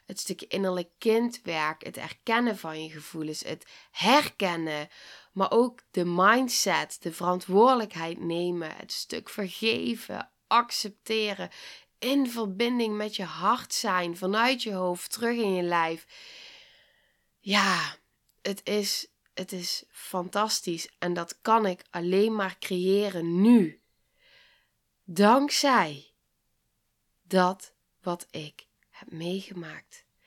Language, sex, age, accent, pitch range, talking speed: Dutch, female, 20-39, Dutch, 170-205 Hz, 110 wpm